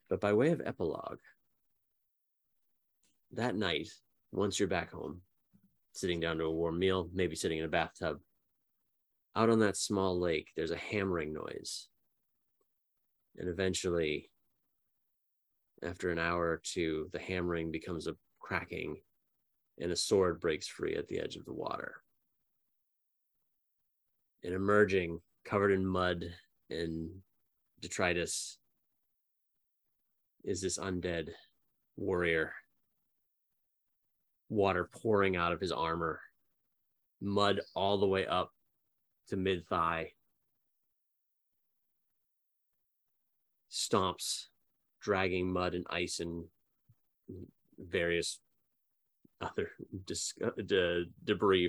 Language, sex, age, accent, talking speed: English, male, 30-49, American, 100 wpm